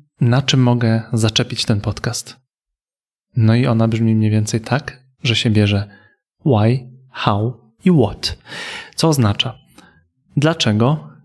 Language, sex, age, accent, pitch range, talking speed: Polish, male, 30-49, native, 110-130 Hz, 125 wpm